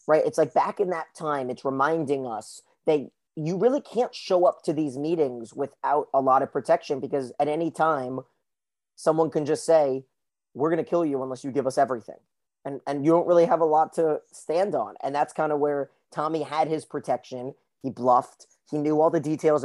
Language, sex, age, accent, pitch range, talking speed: English, male, 30-49, American, 135-160 Hz, 210 wpm